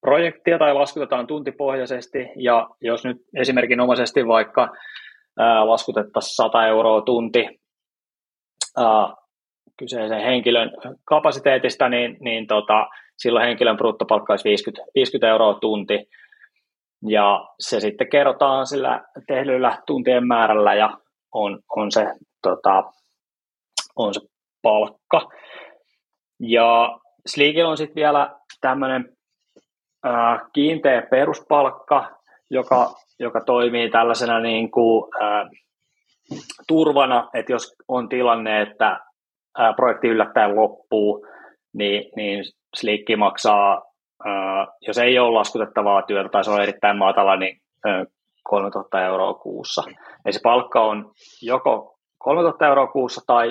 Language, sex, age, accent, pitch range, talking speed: Finnish, male, 20-39, native, 105-130 Hz, 110 wpm